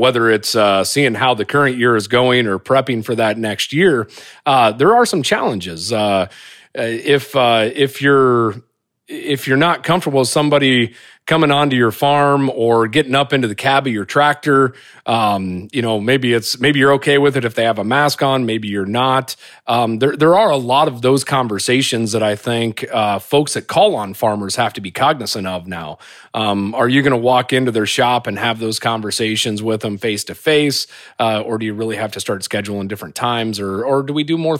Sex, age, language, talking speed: male, 40-59, English, 210 wpm